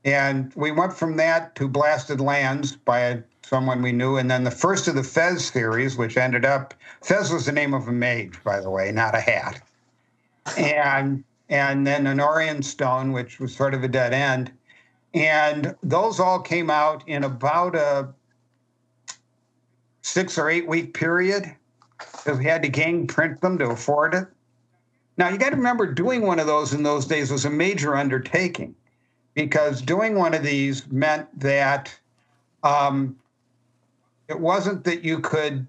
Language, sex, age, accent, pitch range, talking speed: English, male, 50-69, American, 130-160 Hz, 170 wpm